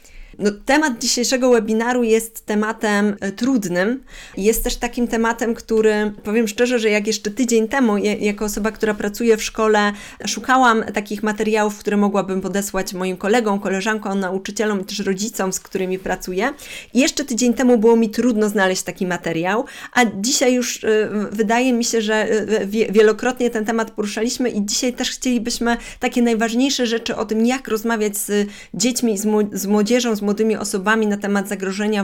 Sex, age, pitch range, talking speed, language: female, 20-39, 195-235 Hz, 150 wpm, Polish